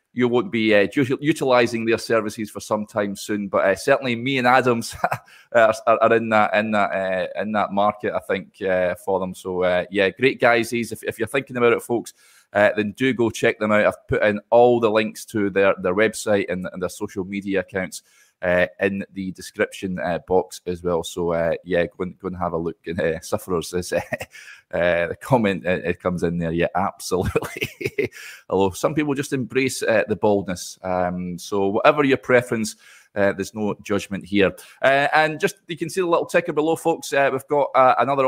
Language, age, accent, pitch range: English, 20-39, British, 100-130 Hz